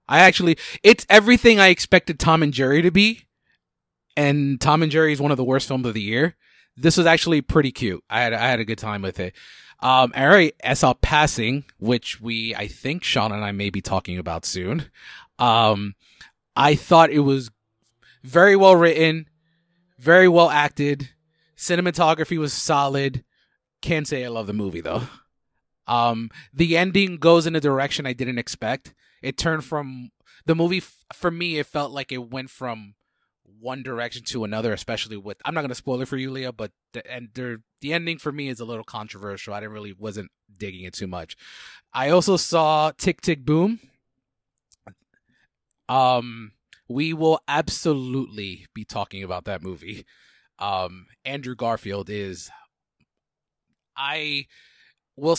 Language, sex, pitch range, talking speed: English, male, 110-160 Hz, 170 wpm